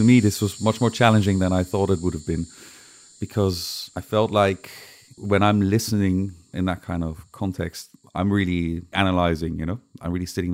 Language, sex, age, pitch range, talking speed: English, male, 30-49, 90-105 Hz, 190 wpm